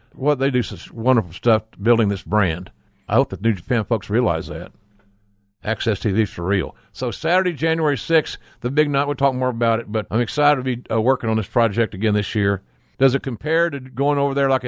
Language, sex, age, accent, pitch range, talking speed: English, male, 50-69, American, 105-140 Hz, 220 wpm